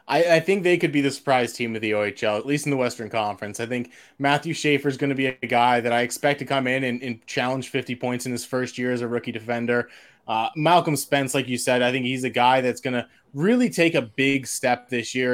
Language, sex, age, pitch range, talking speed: English, male, 20-39, 125-155 Hz, 265 wpm